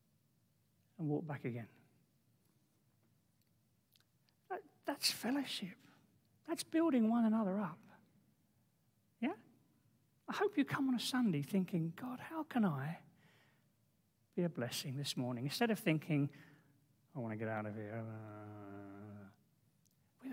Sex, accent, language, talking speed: male, British, English, 120 wpm